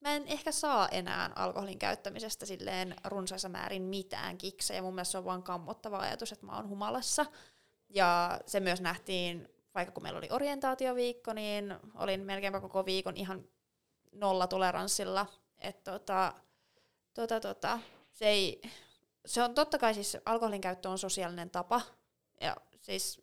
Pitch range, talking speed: 180-220 Hz, 150 wpm